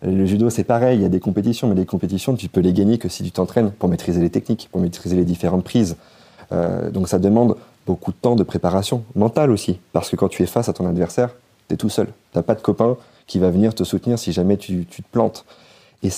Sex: male